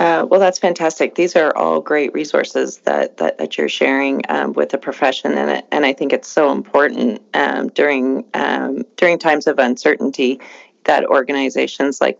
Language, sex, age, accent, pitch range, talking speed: English, female, 30-49, American, 135-155 Hz, 170 wpm